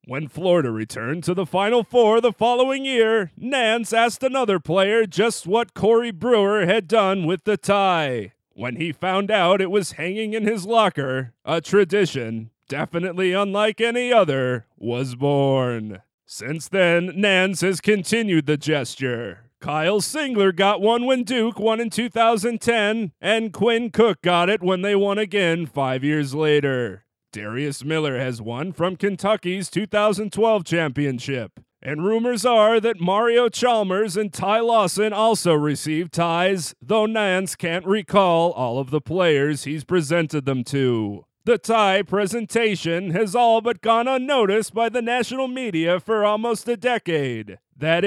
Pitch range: 155-225 Hz